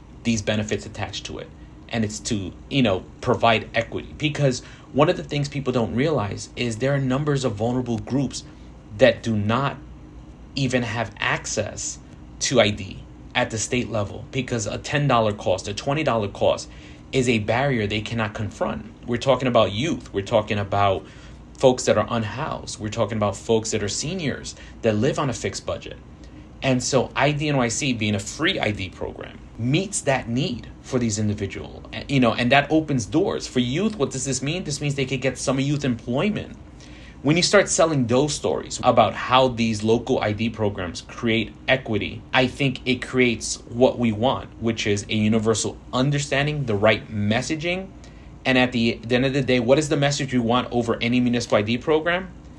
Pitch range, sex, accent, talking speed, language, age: 110-135 Hz, male, American, 185 wpm, English, 30-49